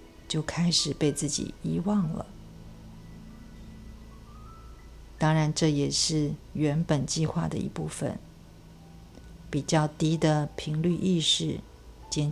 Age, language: 50-69, Chinese